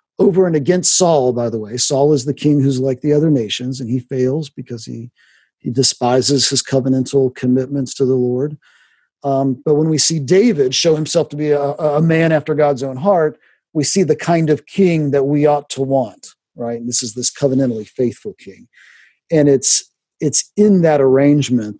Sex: male